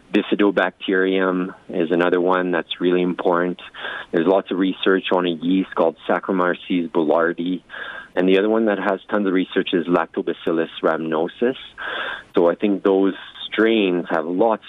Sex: male